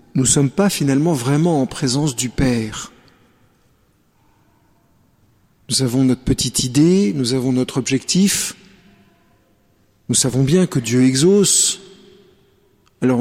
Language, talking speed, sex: French, 120 wpm, male